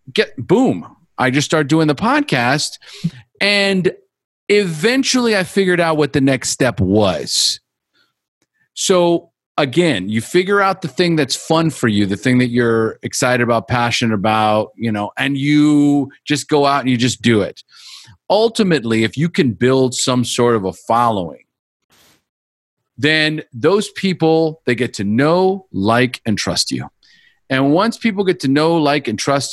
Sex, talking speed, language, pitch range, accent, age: male, 160 wpm, English, 130-185 Hz, American, 40-59